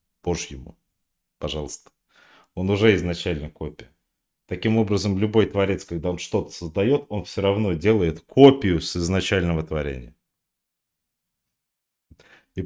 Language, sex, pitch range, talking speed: Russian, male, 85-115 Hz, 105 wpm